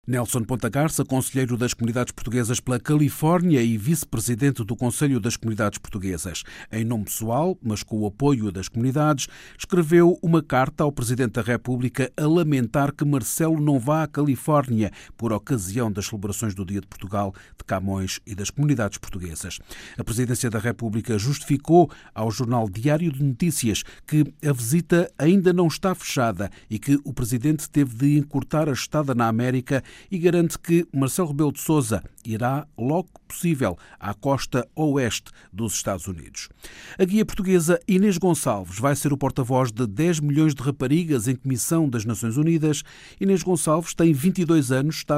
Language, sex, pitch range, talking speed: Portuguese, male, 110-150 Hz, 160 wpm